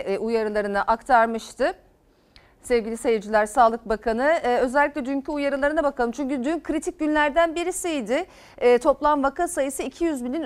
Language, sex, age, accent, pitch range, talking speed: Turkish, female, 40-59, native, 235-320 Hz, 115 wpm